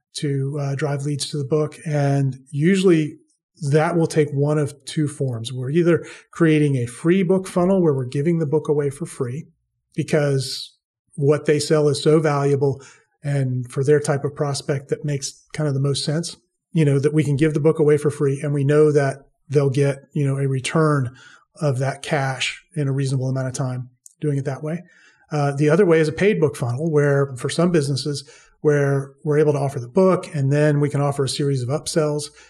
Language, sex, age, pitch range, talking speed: English, male, 30-49, 140-155 Hz, 210 wpm